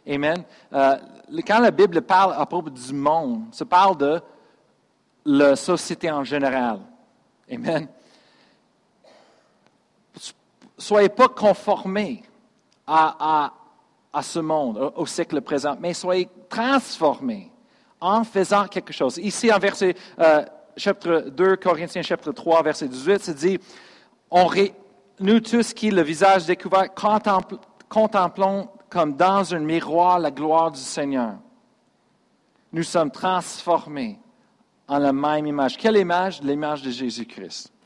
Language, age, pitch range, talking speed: French, 50-69, 150-200 Hz, 120 wpm